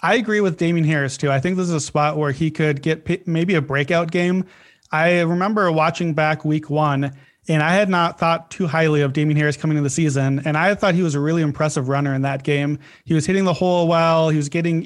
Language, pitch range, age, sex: English, 150-170 Hz, 30-49, male